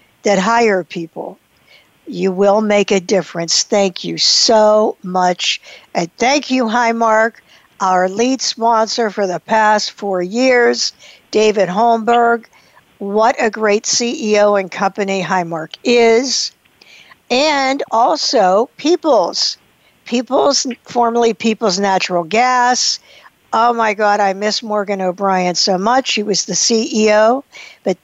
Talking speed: 120 wpm